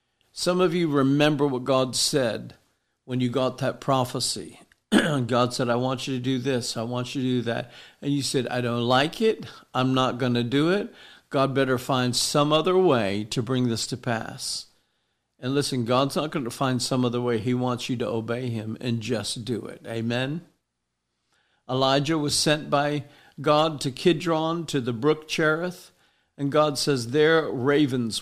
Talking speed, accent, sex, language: 185 wpm, American, male, English